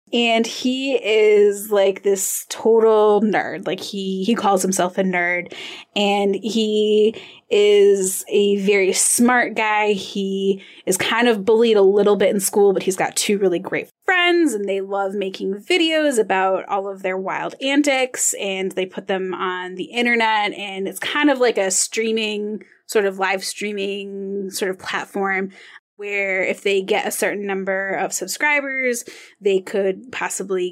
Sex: female